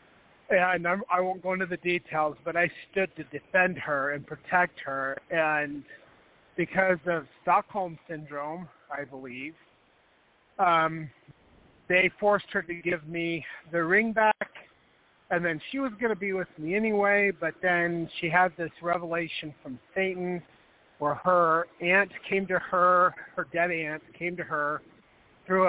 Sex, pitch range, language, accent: male, 155-185 Hz, English, American